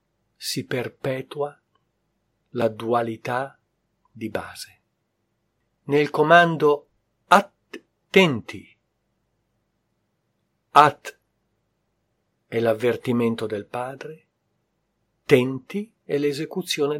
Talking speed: 65 wpm